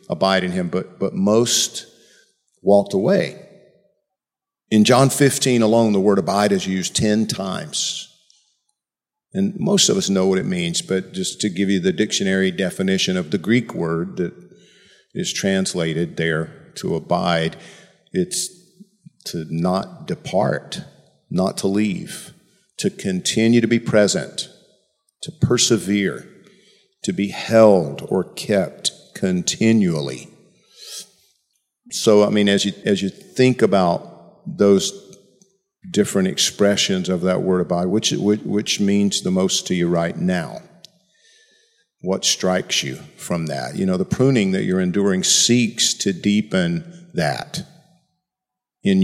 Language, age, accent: English, 50-69, American